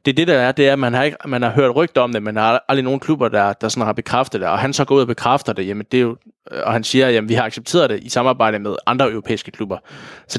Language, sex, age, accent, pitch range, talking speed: Danish, male, 20-39, native, 115-130 Hz, 320 wpm